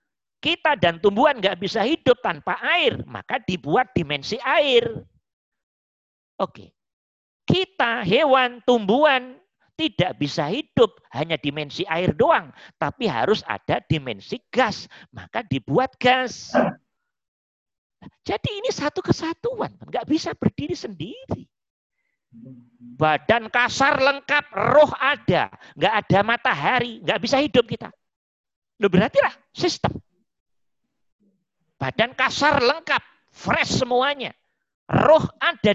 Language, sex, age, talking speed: Indonesian, male, 40-59, 105 wpm